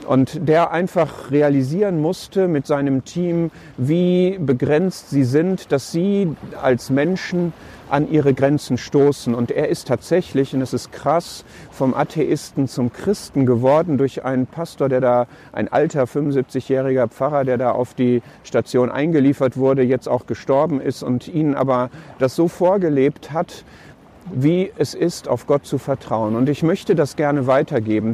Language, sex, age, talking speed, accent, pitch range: German, male, 50-69, 155 wpm, German, 130-165 Hz